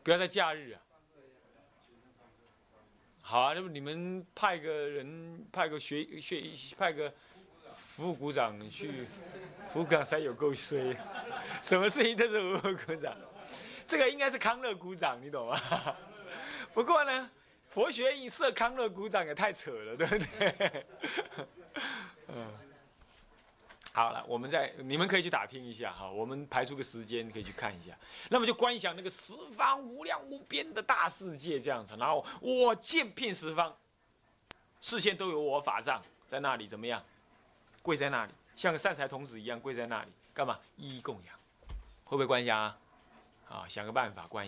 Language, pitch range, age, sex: Chinese, 125-210 Hz, 30-49, male